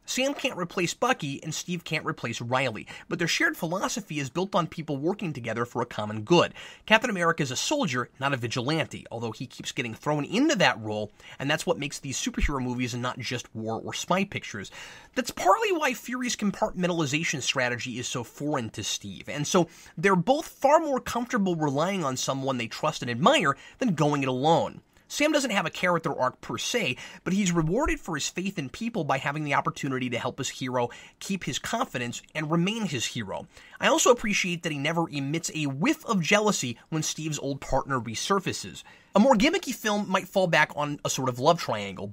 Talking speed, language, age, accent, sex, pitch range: 200 wpm, English, 30-49, American, male, 130-195 Hz